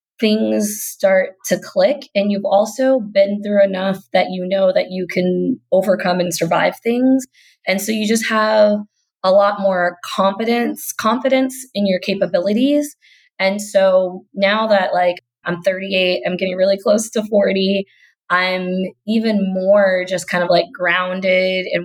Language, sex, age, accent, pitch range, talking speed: English, female, 20-39, American, 180-215 Hz, 150 wpm